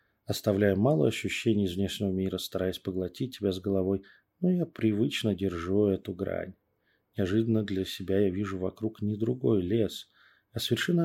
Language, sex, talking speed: Russian, male, 150 wpm